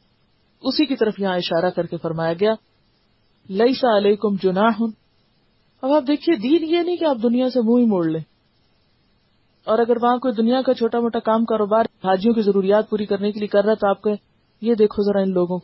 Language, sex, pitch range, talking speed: Urdu, female, 200-265 Hz, 210 wpm